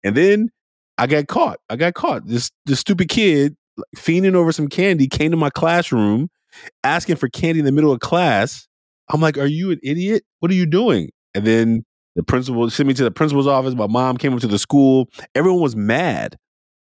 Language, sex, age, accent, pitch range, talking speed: English, male, 30-49, American, 90-145 Hz, 205 wpm